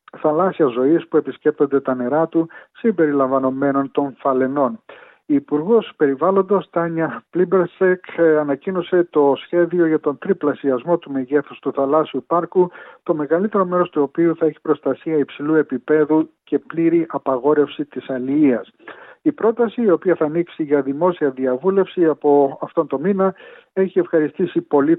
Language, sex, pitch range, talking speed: Greek, male, 140-175 Hz, 135 wpm